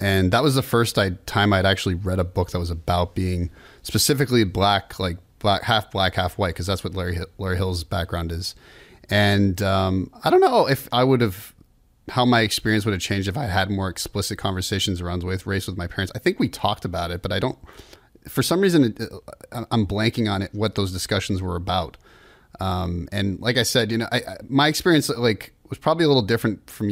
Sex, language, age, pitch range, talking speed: male, English, 30-49, 95-115 Hz, 220 wpm